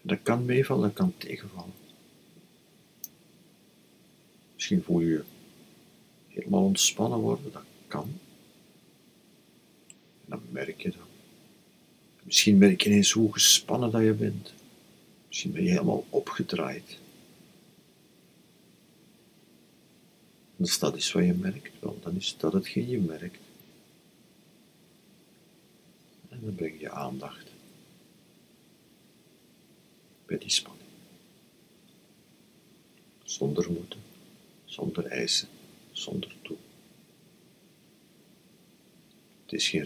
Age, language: 50-69, Dutch